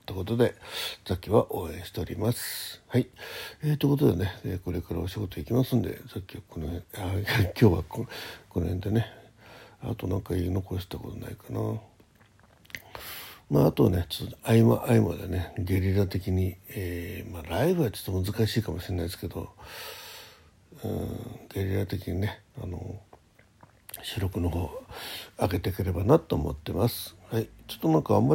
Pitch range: 90-115 Hz